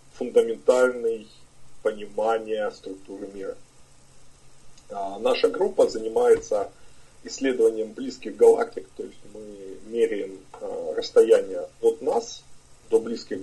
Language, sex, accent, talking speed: Russian, male, native, 95 wpm